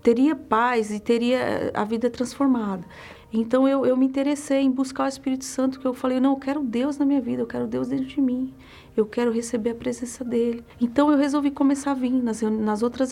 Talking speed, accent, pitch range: 220 wpm, Brazilian, 210-255 Hz